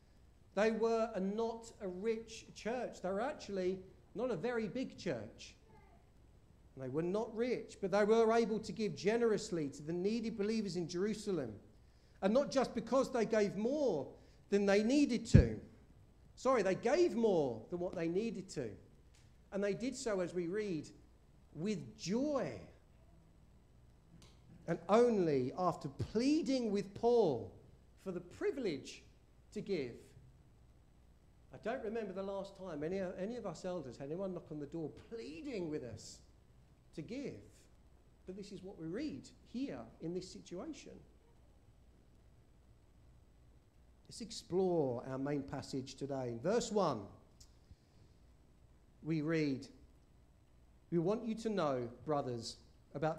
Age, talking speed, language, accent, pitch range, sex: 50-69, 135 wpm, English, British, 145-220 Hz, male